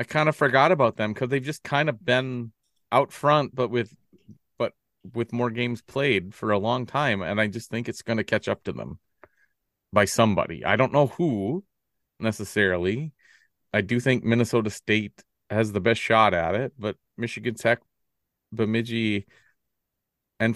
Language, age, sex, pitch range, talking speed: English, 30-49, male, 95-120 Hz, 170 wpm